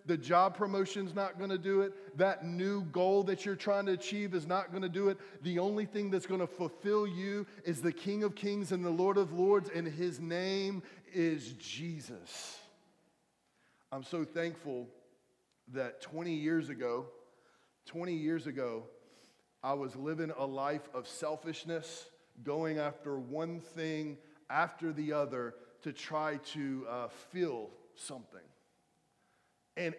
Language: English